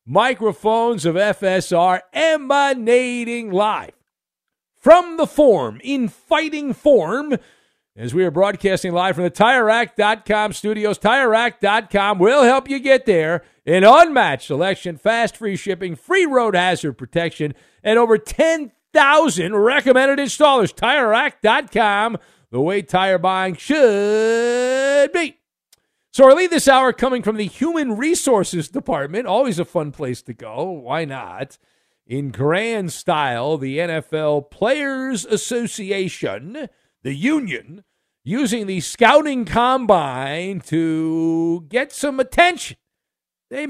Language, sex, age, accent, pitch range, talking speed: English, male, 50-69, American, 175-265 Hz, 115 wpm